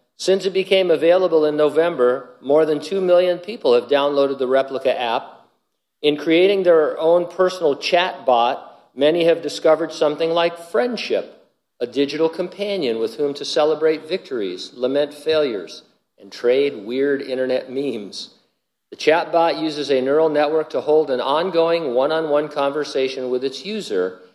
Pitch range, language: 125-165 Hz, English